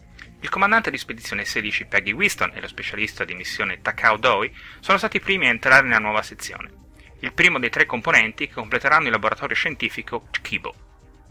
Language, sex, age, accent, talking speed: Italian, male, 30-49, native, 180 wpm